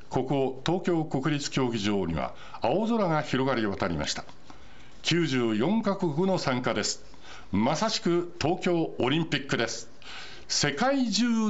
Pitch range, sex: 145-200 Hz, male